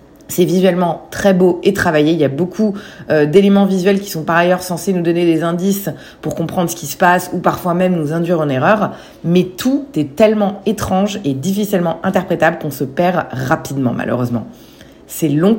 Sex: female